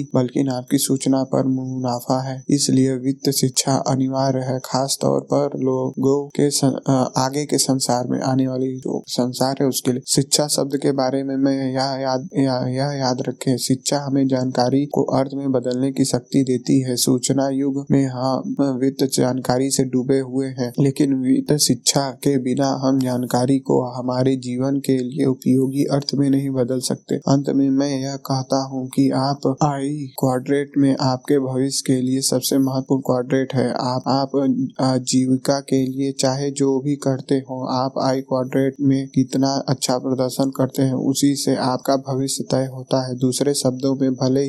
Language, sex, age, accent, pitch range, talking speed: Hindi, male, 20-39, native, 130-140 Hz, 170 wpm